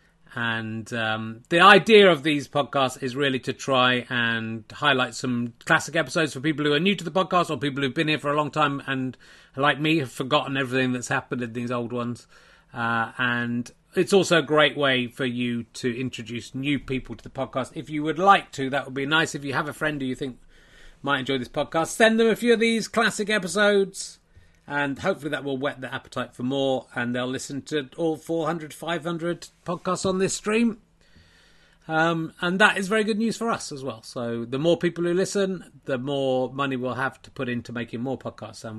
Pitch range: 120-175 Hz